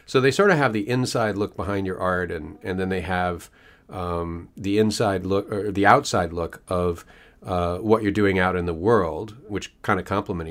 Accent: American